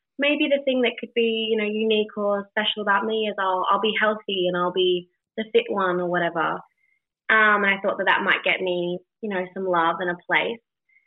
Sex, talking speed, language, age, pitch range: female, 230 wpm, English, 20-39, 185-240 Hz